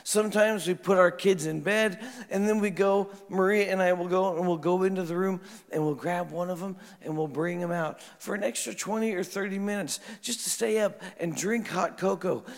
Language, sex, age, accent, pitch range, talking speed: English, male, 50-69, American, 165-210 Hz, 230 wpm